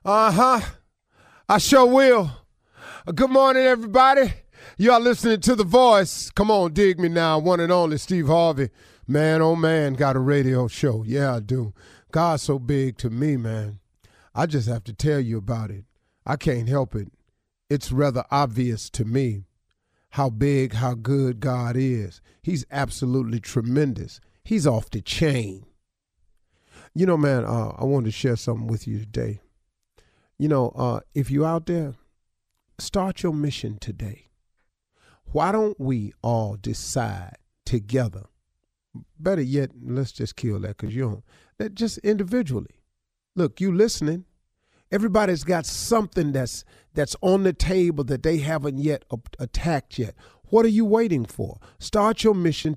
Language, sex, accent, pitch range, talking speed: English, male, American, 120-175 Hz, 155 wpm